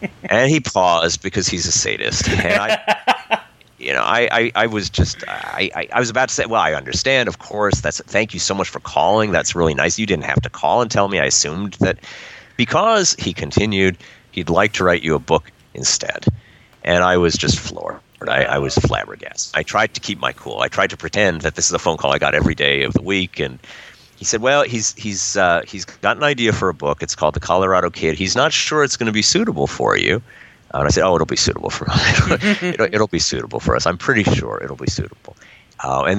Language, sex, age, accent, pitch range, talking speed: English, male, 40-59, American, 70-100 Hz, 240 wpm